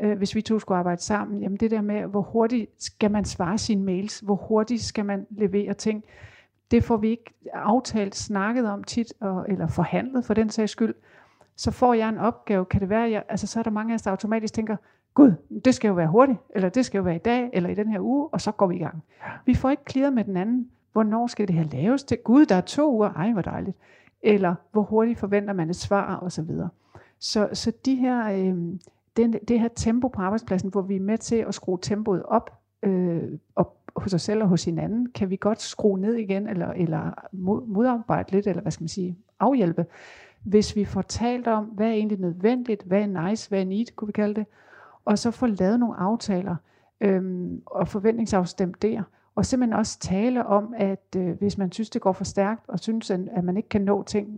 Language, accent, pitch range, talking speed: Danish, native, 190-225 Hz, 230 wpm